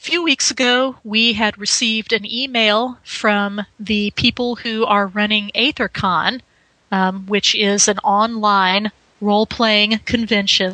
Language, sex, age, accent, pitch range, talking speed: English, female, 30-49, American, 195-225 Hz, 130 wpm